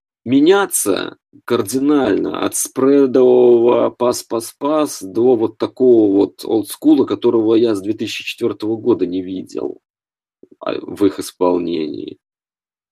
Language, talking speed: Russian, 95 wpm